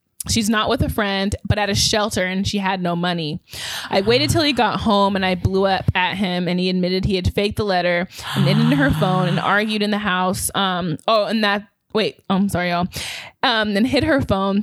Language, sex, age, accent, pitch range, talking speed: English, female, 20-39, American, 180-215 Hz, 235 wpm